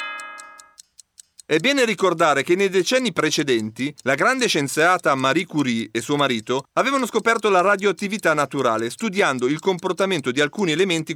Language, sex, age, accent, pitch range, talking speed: Italian, male, 40-59, native, 135-210 Hz, 140 wpm